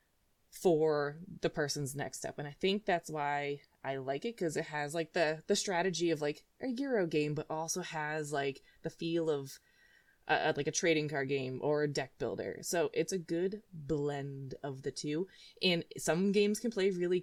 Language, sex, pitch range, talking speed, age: English, female, 145-185 Hz, 195 wpm, 20-39